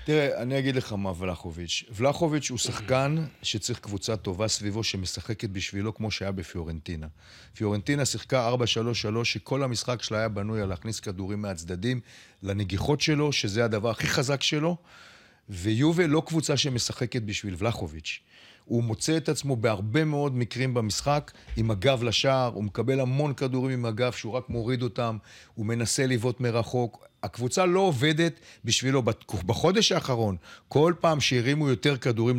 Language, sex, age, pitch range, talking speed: Hebrew, male, 40-59, 105-140 Hz, 145 wpm